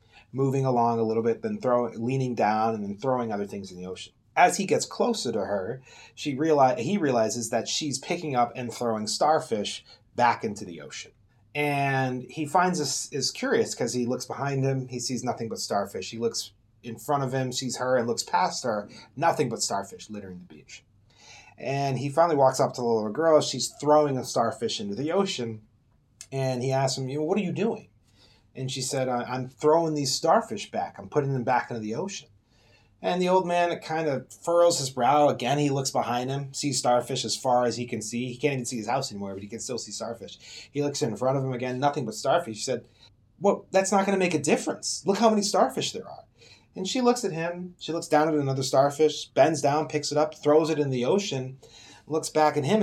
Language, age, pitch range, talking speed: English, 30-49, 120-150 Hz, 225 wpm